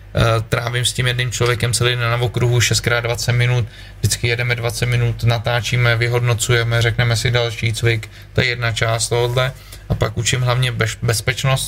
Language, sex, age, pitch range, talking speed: Czech, male, 20-39, 110-120 Hz, 155 wpm